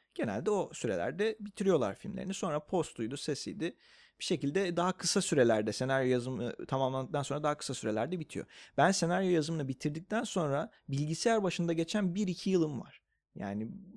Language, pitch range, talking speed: Turkish, 130-180 Hz, 140 wpm